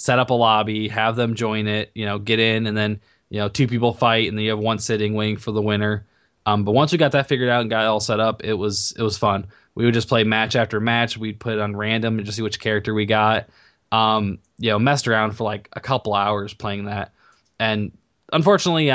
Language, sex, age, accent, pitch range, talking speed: English, male, 20-39, American, 105-115 Hz, 255 wpm